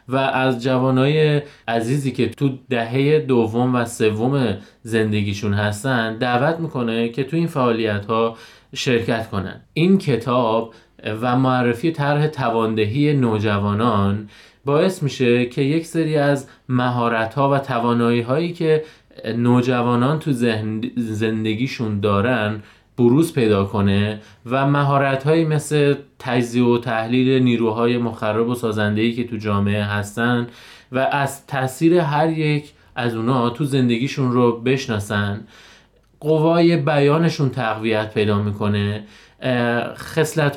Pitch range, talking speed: 110-140 Hz, 115 wpm